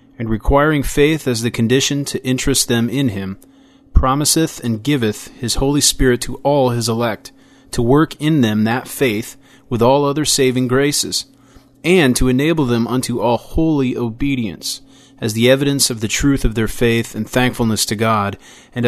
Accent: American